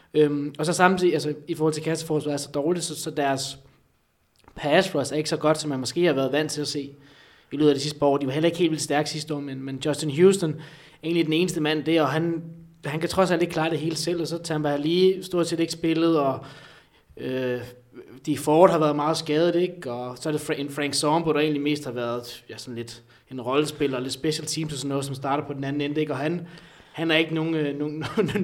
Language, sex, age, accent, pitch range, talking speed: Danish, male, 20-39, native, 140-160 Hz, 255 wpm